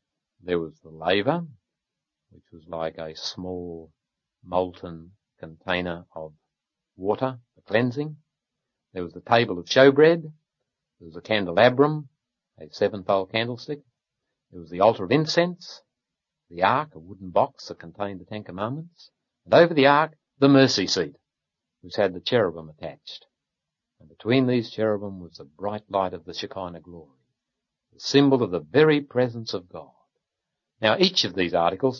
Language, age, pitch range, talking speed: English, 60-79, 90-135 Hz, 150 wpm